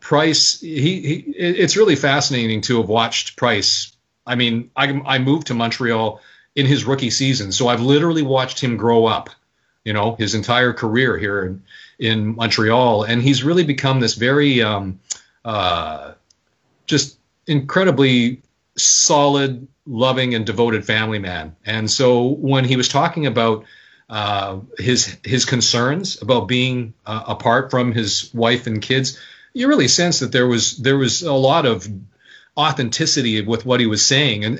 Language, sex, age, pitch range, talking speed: English, male, 40-59, 110-135 Hz, 160 wpm